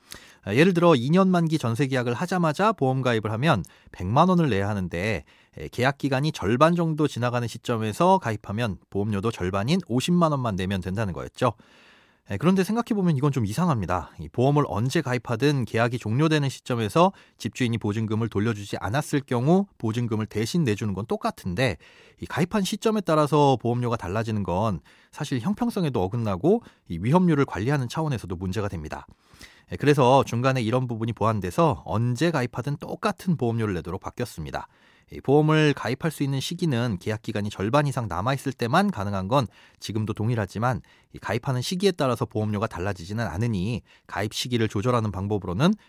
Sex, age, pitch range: male, 30-49, 105-155 Hz